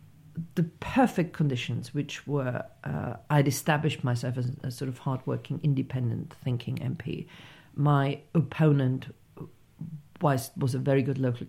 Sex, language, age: female, English, 50-69